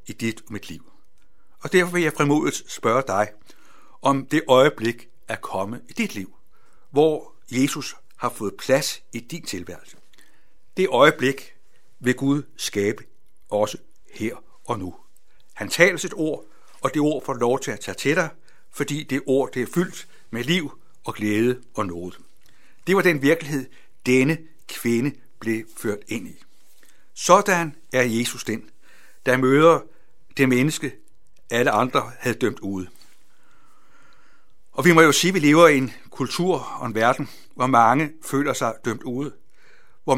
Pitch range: 120-150 Hz